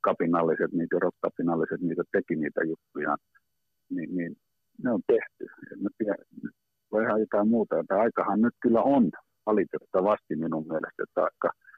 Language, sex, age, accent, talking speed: Finnish, male, 50-69, native, 140 wpm